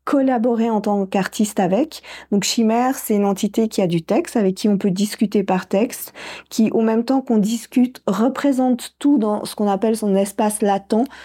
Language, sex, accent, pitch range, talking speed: French, female, French, 195-230 Hz, 190 wpm